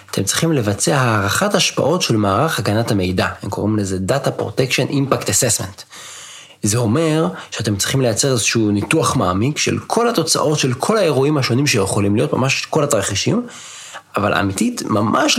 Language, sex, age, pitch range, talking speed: Hebrew, male, 30-49, 105-150 Hz, 150 wpm